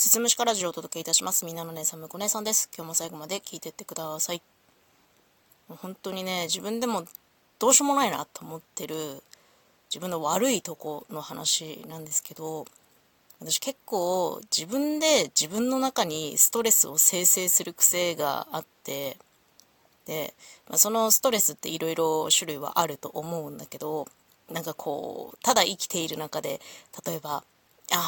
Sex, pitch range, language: female, 160-235 Hz, Japanese